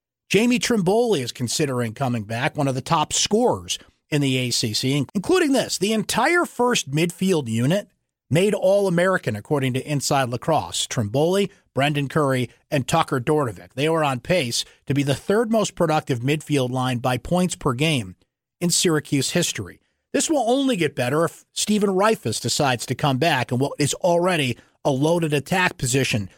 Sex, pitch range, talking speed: male, 130-175 Hz, 165 wpm